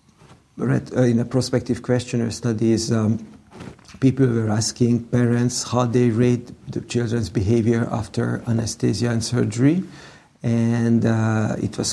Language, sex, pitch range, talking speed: English, male, 115-120 Hz, 130 wpm